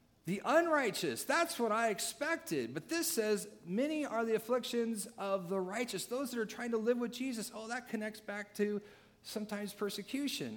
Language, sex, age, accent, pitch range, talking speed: English, male, 40-59, American, 155-210 Hz, 175 wpm